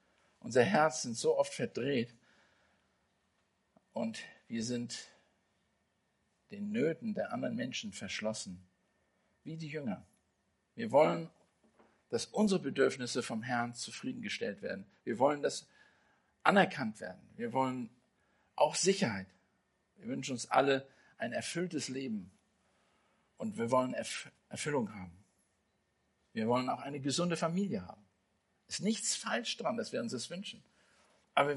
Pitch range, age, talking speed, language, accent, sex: 115-195 Hz, 50-69, 125 wpm, German, German, male